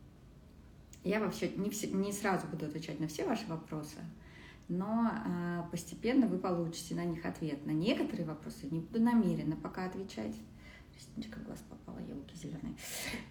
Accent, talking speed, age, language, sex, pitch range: native, 120 wpm, 30-49, Russian, female, 165-210 Hz